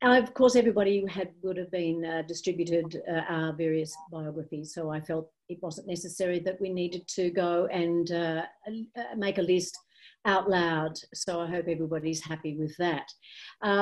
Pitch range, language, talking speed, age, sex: 155-190 Hz, English, 175 wpm, 50-69, female